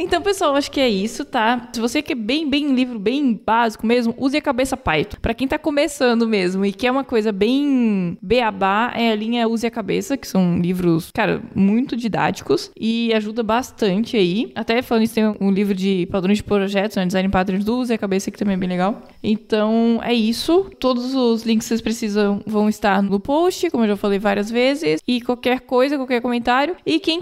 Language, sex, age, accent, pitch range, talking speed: Portuguese, female, 20-39, Brazilian, 205-250 Hz, 210 wpm